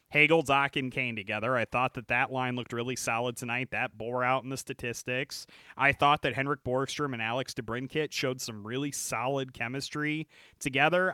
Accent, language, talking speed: American, English, 185 wpm